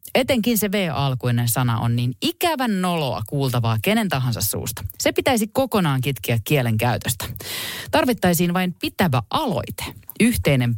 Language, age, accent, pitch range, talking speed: Finnish, 30-49, native, 125-190 Hz, 120 wpm